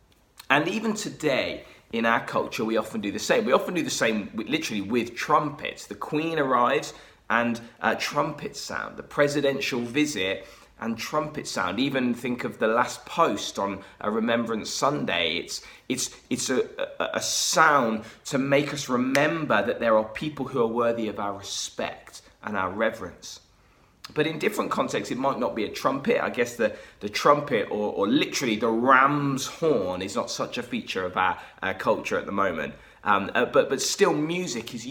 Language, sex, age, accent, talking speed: English, male, 20-39, British, 180 wpm